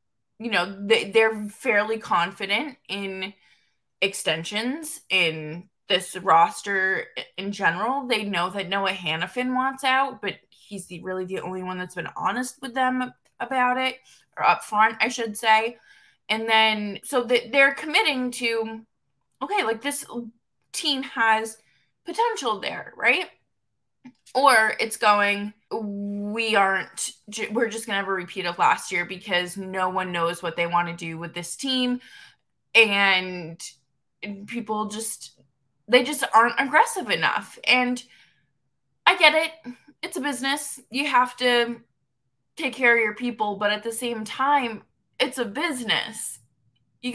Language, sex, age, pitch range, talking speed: English, female, 20-39, 185-260 Hz, 140 wpm